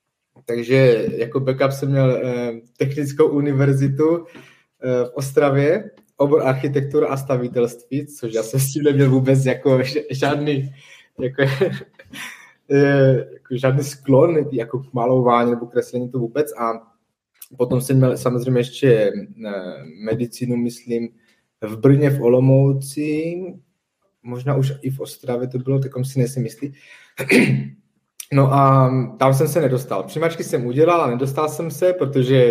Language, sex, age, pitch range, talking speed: Czech, male, 20-39, 120-145 Hz, 140 wpm